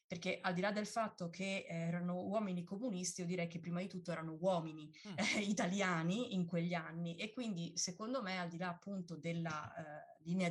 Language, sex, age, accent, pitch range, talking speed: Italian, female, 20-39, native, 165-190 Hz, 195 wpm